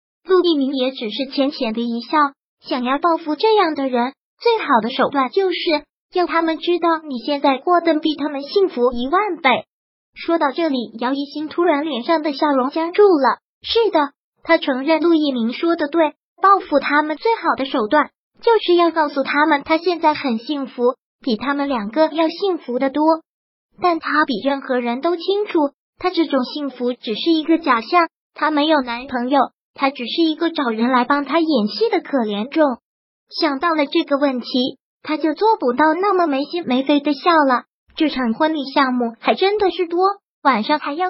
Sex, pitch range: male, 265-330 Hz